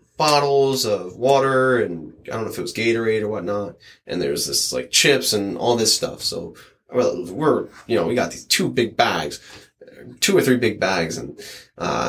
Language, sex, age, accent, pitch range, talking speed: English, male, 20-39, American, 105-130 Hz, 200 wpm